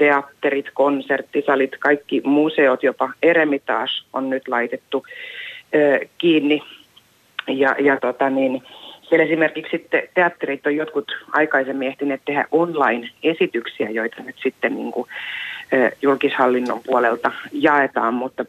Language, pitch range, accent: Finnish, 135-155 Hz, native